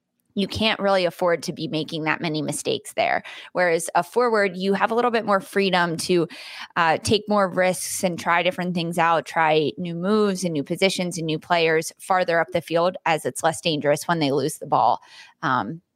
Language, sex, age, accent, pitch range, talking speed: English, female, 20-39, American, 170-210 Hz, 205 wpm